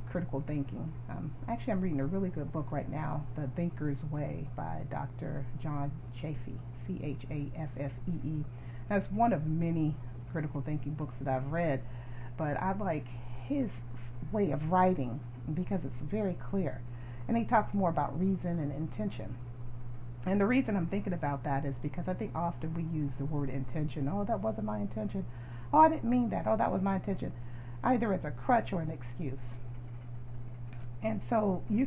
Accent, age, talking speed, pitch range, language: American, 40-59, 170 wpm, 120-170 Hz, English